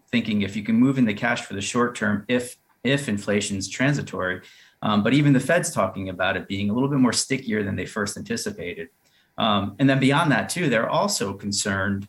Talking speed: 215 wpm